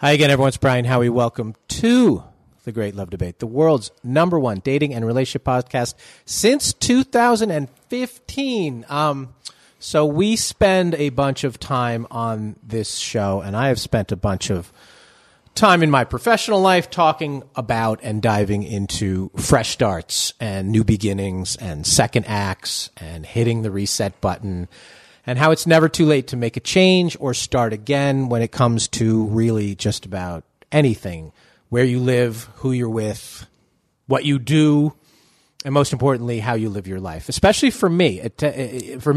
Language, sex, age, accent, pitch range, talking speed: English, male, 40-59, American, 105-145 Hz, 160 wpm